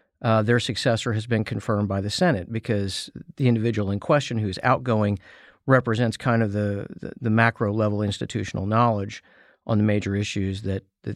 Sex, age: male, 50-69